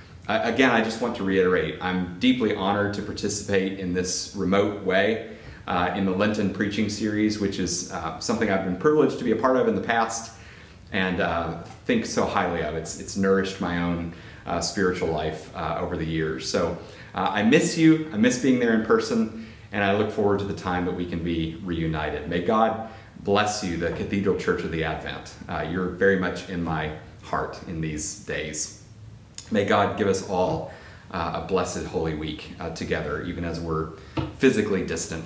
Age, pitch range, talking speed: 30-49, 90-110 Hz, 195 wpm